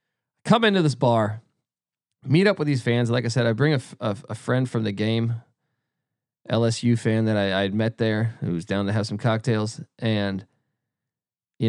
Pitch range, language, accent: 115-145 Hz, English, American